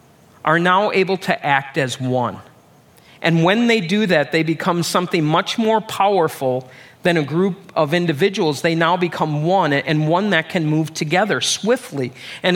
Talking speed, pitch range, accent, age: 165 wpm, 165-205 Hz, American, 40-59